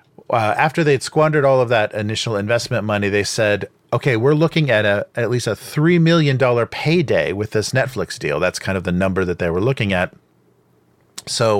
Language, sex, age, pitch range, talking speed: English, male, 40-59, 95-125 Hz, 200 wpm